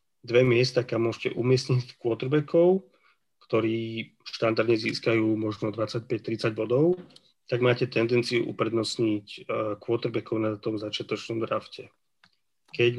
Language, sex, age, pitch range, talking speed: Slovak, male, 40-59, 115-130 Hz, 100 wpm